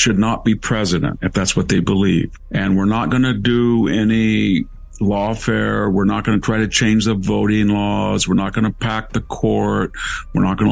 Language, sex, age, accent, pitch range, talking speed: English, male, 50-69, American, 95-110 Hz, 205 wpm